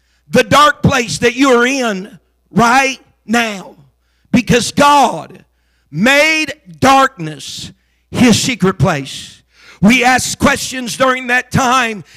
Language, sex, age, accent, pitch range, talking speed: English, male, 50-69, American, 230-270 Hz, 110 wpm